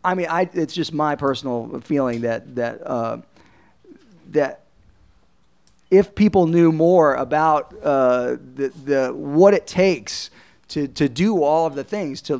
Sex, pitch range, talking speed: male, 140-175 Hz, 150 wpm